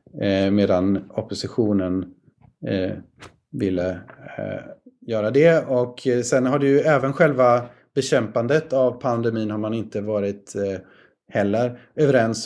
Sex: male